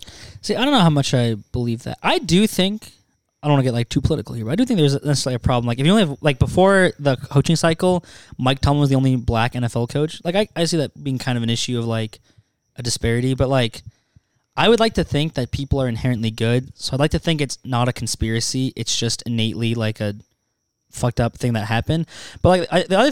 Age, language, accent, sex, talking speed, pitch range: 20-39, English, American, male, 250 wpm, 120-150 Hz